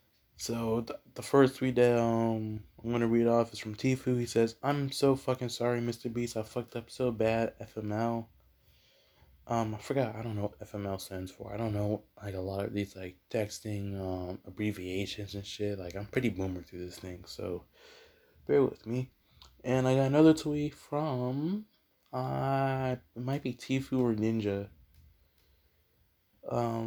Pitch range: 100-125 Hz